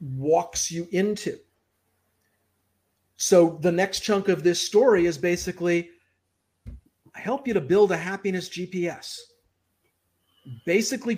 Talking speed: 115 wpm